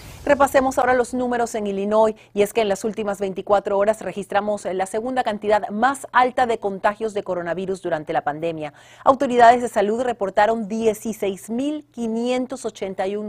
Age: 40-59